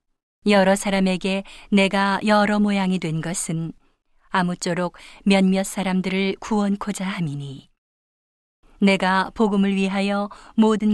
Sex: female